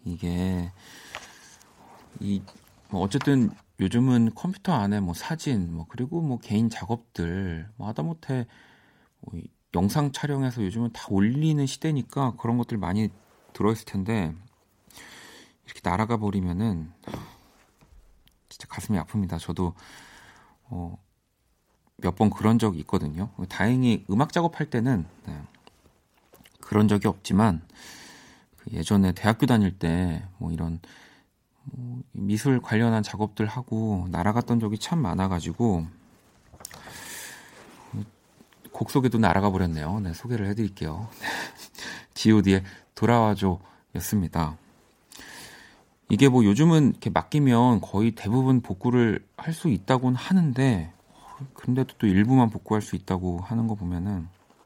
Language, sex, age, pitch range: Korean, male, 40-59, 95-125 Hz